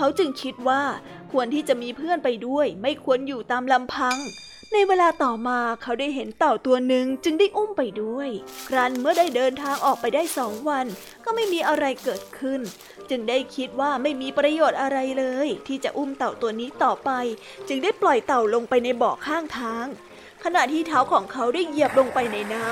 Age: 20-39